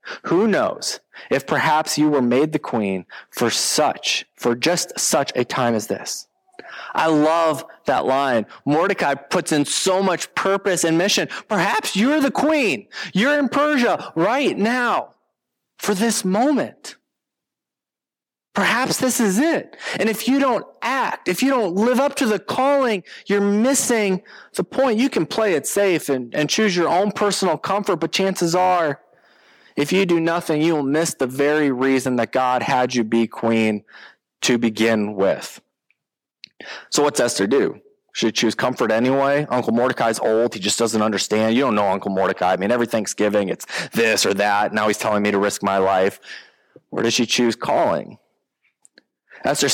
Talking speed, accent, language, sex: 165 wpm, American, English, male